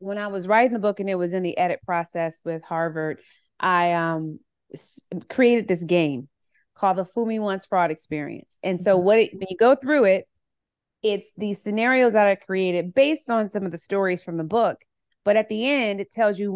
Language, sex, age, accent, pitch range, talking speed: English, female, 30-49, American, 180-230 Hz, 215 wpm